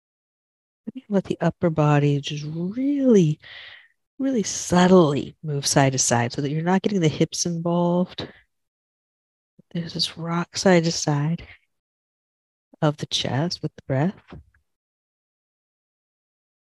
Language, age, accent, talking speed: English, 50-69, American, 115 wpm